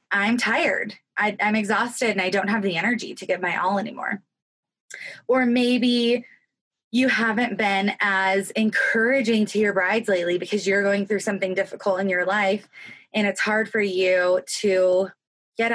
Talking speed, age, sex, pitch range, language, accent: 160 wpm, 20-39, female, 195-245 Hz, English, American